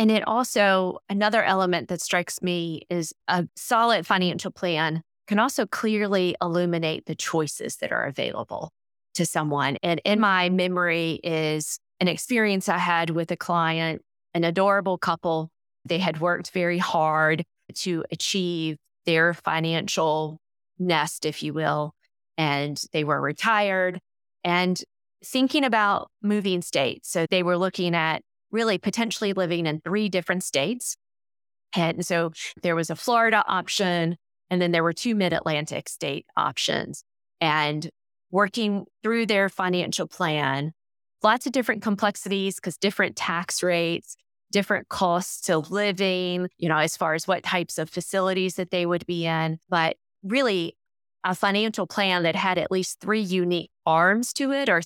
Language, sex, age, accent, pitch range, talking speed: English, female, 30-49, American, 165-200 Hz, 150 wpm